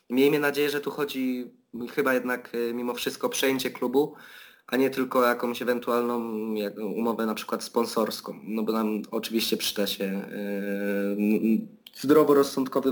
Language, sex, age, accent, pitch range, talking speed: Polish, male, 20-39, native, 115-130 Hz, 135 wpm